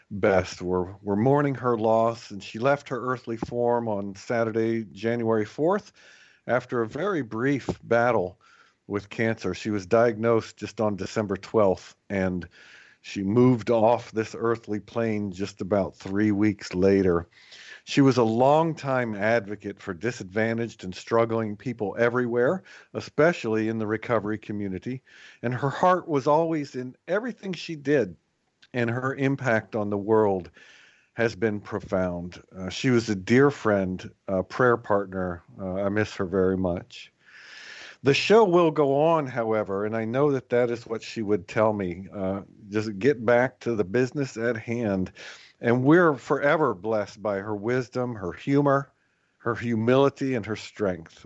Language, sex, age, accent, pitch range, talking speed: English, male, 50-69, American, 100-125 Hz, 155 wpm